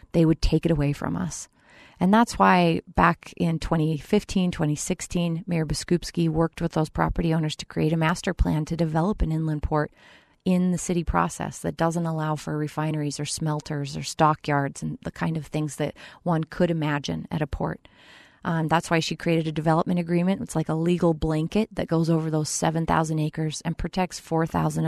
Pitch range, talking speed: 155-170 Hz, 190 wpm